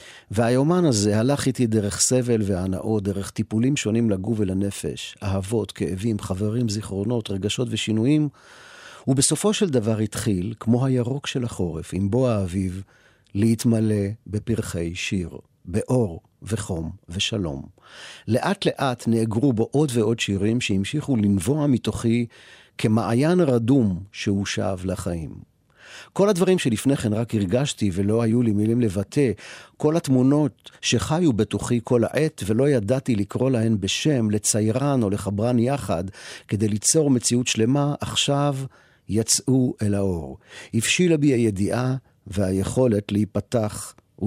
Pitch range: 100-125 Hz